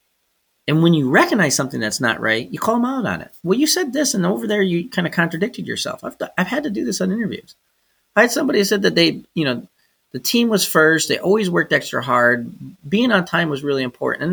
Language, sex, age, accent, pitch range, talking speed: English, male, 30-49, American, 125-195 Hz, 245 wpm